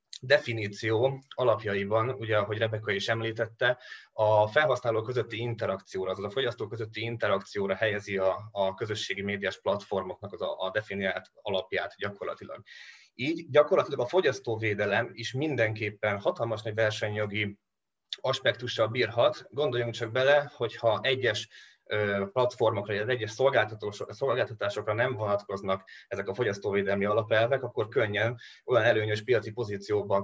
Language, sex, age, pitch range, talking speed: Hungarian, male, 20-39, 105-120 Hz, 125 wpm